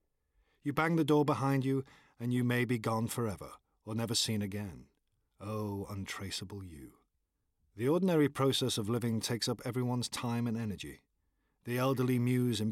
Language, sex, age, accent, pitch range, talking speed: English, male, 50-69, British, 105-140 Hz, 160 wpm